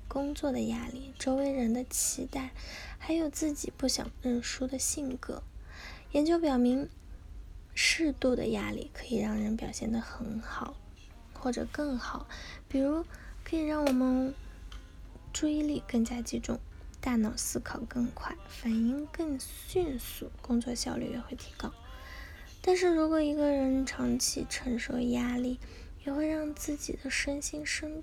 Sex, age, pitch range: female, 10-29, 235-290 Hz